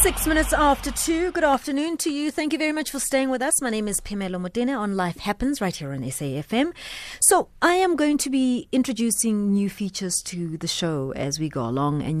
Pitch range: 175-250 Hz